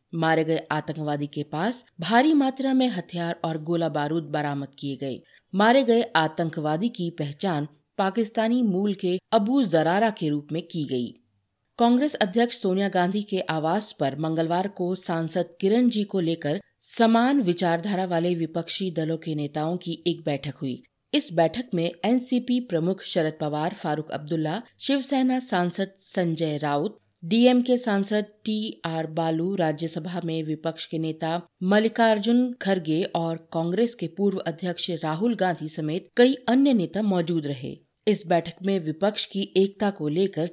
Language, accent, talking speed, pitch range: Hindi, native, 150 wpm, 160-210 Hz